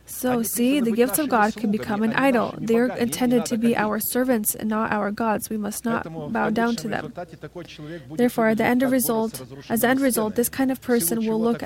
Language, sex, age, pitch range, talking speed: English, female, 20-39, 215-245 Hz, 200 wpm